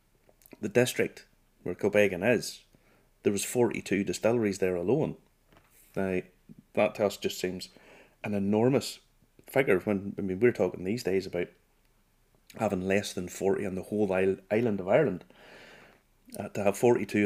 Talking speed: 145 wpm